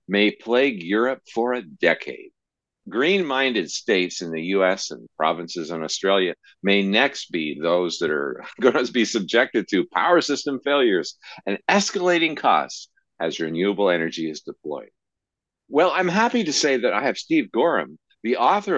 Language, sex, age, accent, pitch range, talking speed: English, male, 50-69, American, 95-145 Hz, 155 wpm